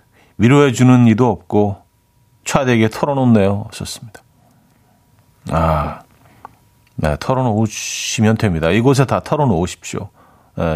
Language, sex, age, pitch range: Korean, male, 40-59, 95-125 Hz